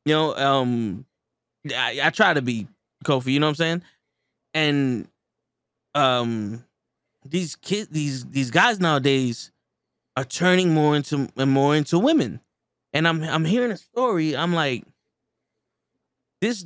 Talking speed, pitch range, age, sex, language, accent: 140 wpm, 145-215 Hz, 20-39, male, English, American